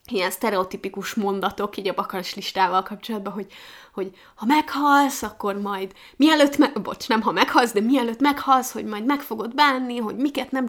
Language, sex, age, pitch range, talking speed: Hungarian, female, 20-39, 200-270 Hz, 175 wpm